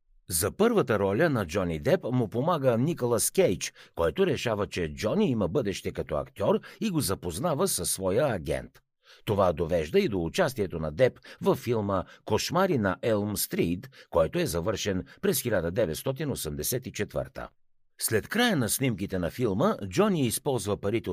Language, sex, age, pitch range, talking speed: Bulgarian, male, 60-79, 95-145 Hz, 145 wpm